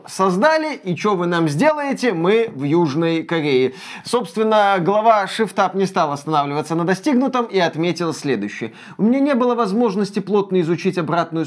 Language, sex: Russian, male